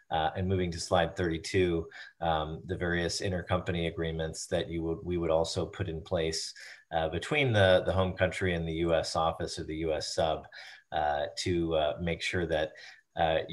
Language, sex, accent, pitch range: English, male, American, 80-90 Hz